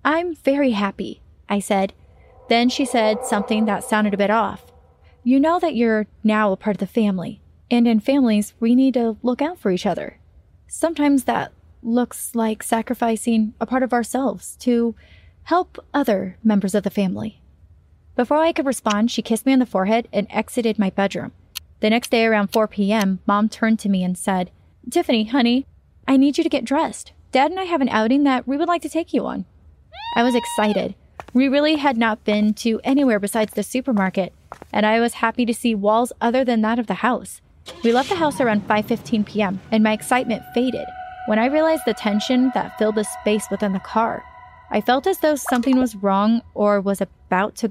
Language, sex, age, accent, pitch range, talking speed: English, female, 30-49, American, 210-255 Hz, 200 wpm